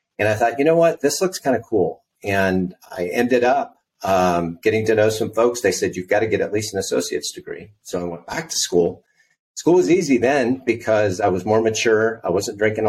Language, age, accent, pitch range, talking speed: English, 40-59, American, 90-115 Hz, 235 wpm